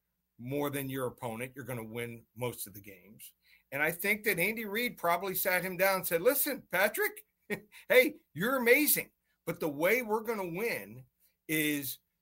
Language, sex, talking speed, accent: English, male, 180 wpm, American